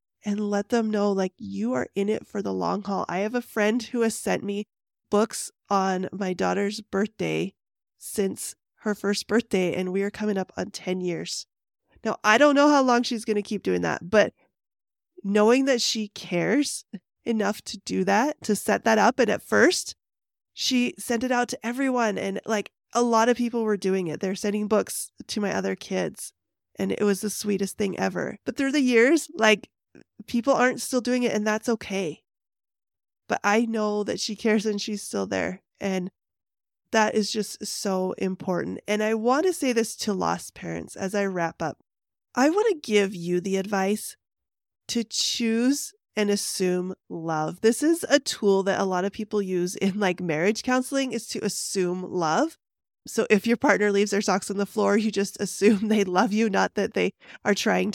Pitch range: 195-235 Hz